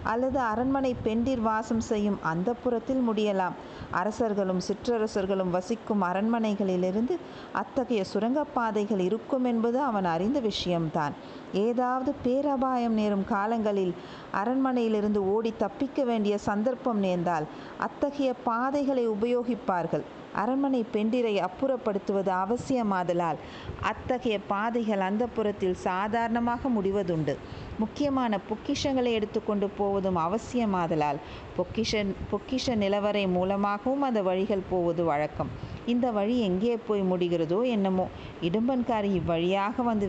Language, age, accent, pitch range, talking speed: Tamil, 50-69, native, 190-240 Hz, 95 wpm